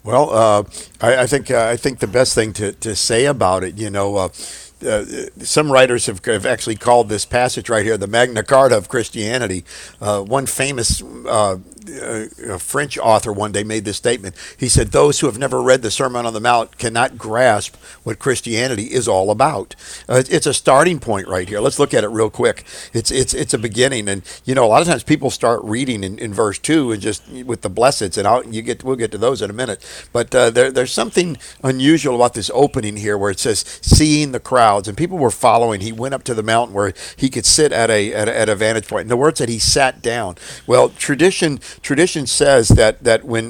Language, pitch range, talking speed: English, 110-135 Hz, 230 wpm